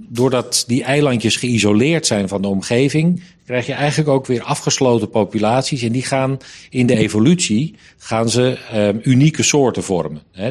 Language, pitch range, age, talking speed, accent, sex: Dutch, 100-130 Hz, 40-59, 160 wpm, Dutch, male